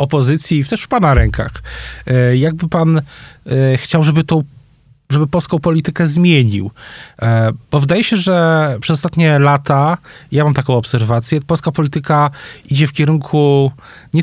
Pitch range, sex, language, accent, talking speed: 130-150 Hz, male, Polish, native, 135 wpm